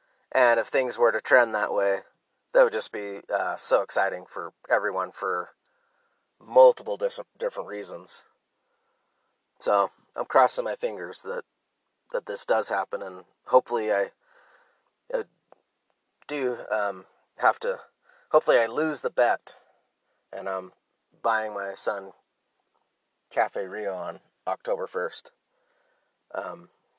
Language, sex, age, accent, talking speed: English, male, 30-49, American, 125 wpm